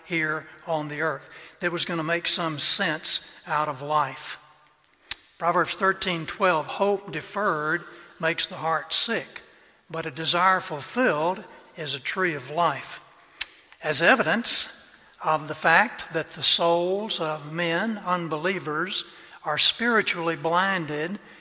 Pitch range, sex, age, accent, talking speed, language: 160-185 Hz, male, 60-79, American, 130 wpm, English